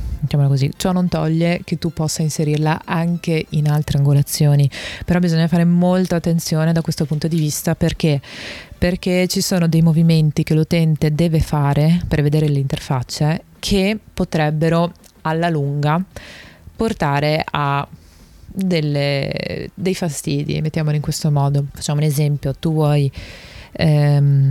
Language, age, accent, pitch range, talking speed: Italian, 20-39, native, 145-170 Hz, 135 wpm